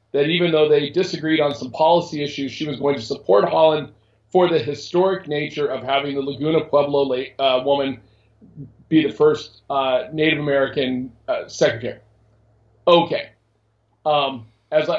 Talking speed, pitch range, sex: 150 wpm, 115-160 Hz, male